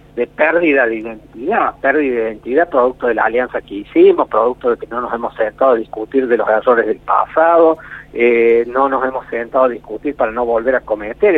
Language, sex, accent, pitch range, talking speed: Spanish, male, Argentinian, 120-160 Hz, 205 wpm